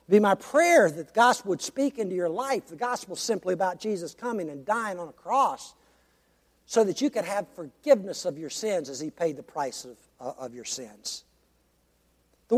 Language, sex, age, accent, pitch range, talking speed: English, male, 60-79, American, 210-295 Hz, 210 wpm